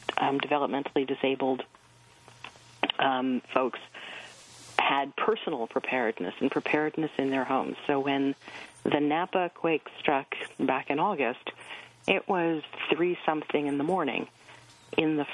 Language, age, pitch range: English, 40-59, 140-155 Hz